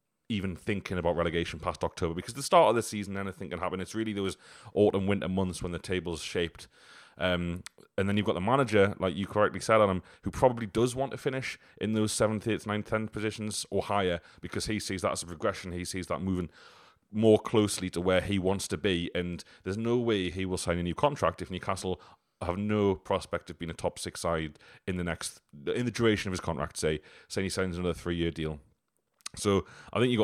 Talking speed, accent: 220 wpm, British